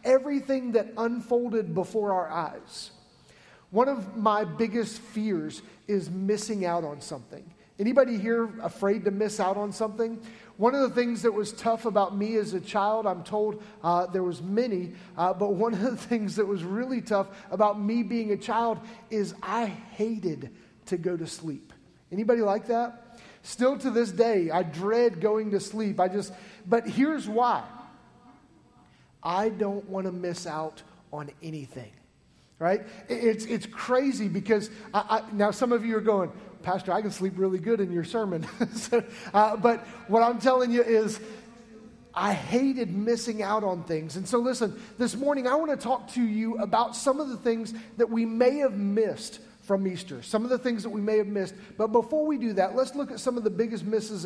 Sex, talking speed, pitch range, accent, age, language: male, 185 wpm, 195-235 Hz, American, 30-49, English